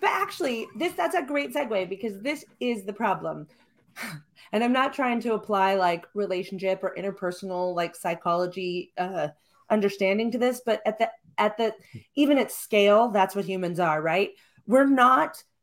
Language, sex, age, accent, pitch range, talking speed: English, female, 30-49, American, 185-235 Hz, 165 wpm